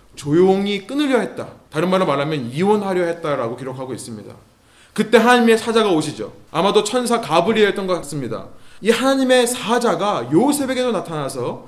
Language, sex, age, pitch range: Korean, male, 20-39, 145-205 Hz